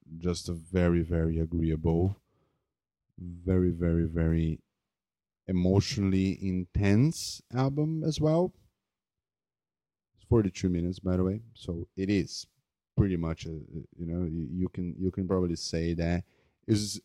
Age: 30-49